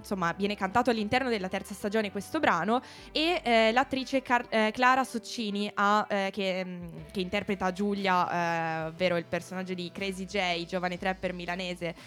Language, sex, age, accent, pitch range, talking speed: Italian, female, 20-39, native, 180-215 Hz, 145 wpm